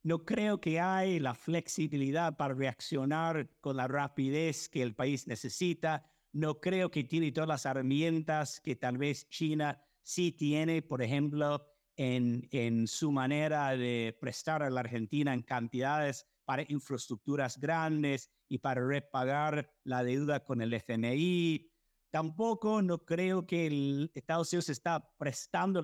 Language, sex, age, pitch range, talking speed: Spanish, male, 50-69, 135-170 Hz, 140 wpm